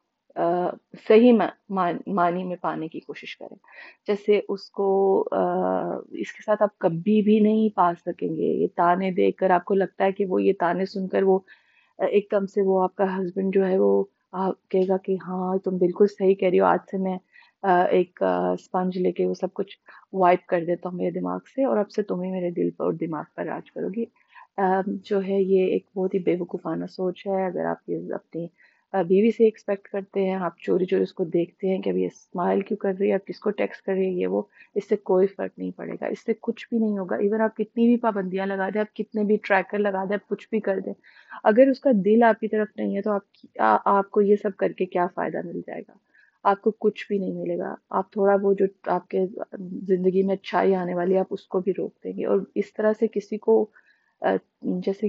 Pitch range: 185-210 Hz